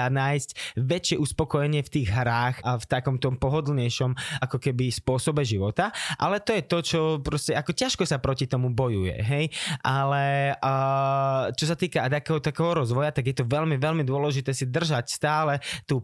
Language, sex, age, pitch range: Slovak, male, 20-39, 125-155 Hz